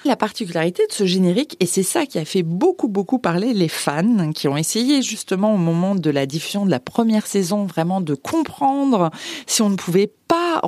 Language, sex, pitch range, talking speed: French, female, 180-250 Hz, 210 wpm